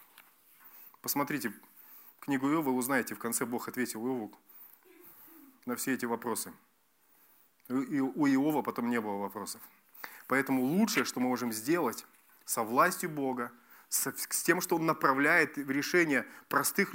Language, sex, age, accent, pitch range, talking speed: Russian, male, 30-49, native, 140-200 Hz, 125 wpm